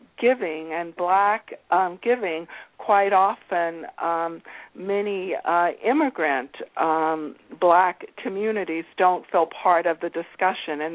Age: 60-79